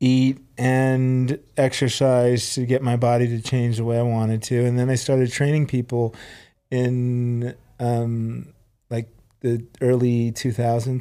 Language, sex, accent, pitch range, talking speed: English, male, American, 115-130 Hz, 140 wpm